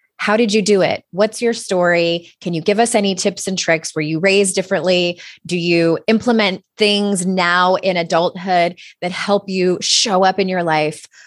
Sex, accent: female, American